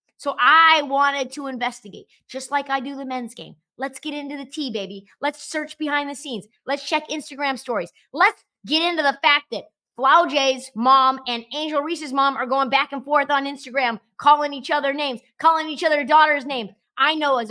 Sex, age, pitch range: female, 30-49, 250-330 Hz